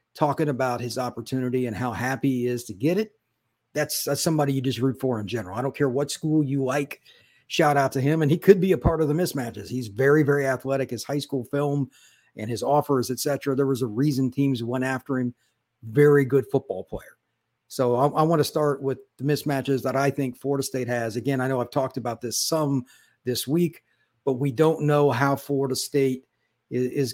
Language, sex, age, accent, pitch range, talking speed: English, male, 50-69, American, 125-150 Hz, 215 wpm